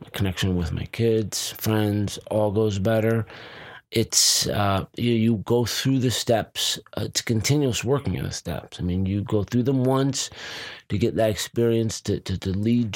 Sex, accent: male, American